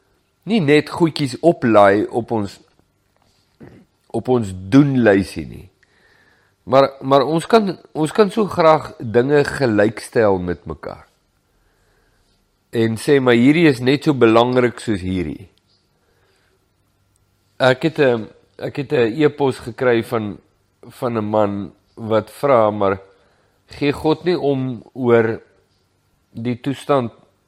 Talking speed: 115 wpm